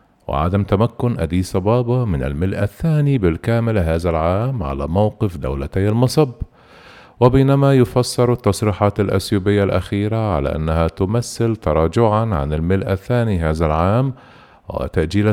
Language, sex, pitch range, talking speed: Arabic, male, 90-115 Hz, 115 wpm